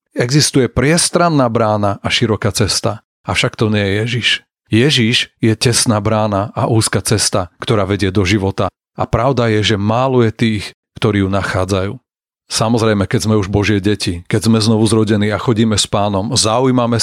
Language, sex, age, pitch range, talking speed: Slovak, male, 40-59, 110-125 Hz, 160 wpm